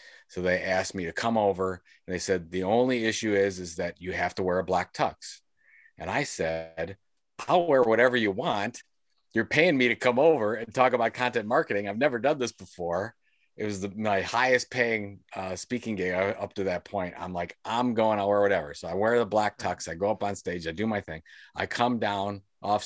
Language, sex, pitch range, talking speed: English, male, 95-120 Hz, 225 wpm